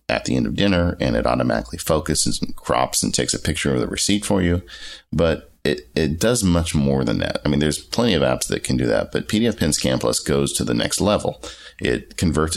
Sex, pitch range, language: male, 65-85 Hz, English